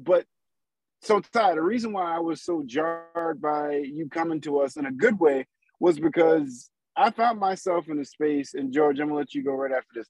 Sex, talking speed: male, 220 wpm